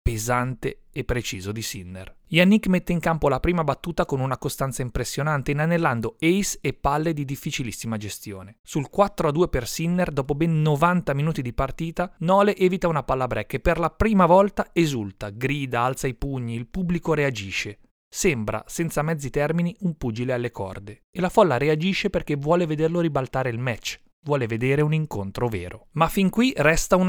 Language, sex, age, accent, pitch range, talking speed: Italian, male, 30-49, native, 125-175 Hz, 175 wpm